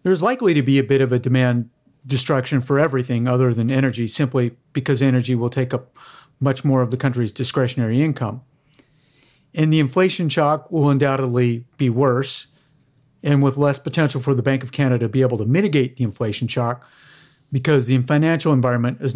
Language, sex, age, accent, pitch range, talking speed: English, male, 40-59, American, 125-150 Hz, 180 wpm